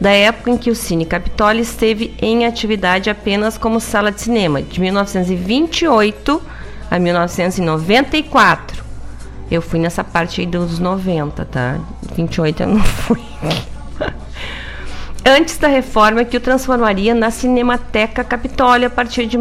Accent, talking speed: Brazilian, 135 wpm